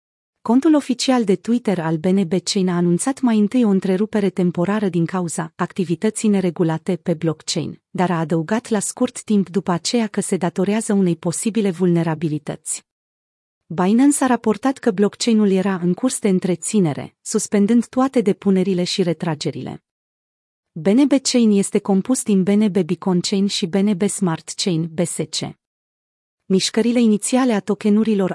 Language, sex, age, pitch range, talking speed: Romanian, female, 30-49, 175-220 Hz, 140 wpm